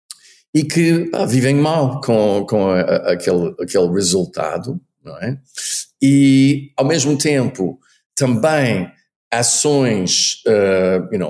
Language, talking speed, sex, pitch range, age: Portuguese, 115 wpm, male, 115-140 Hz, 50-69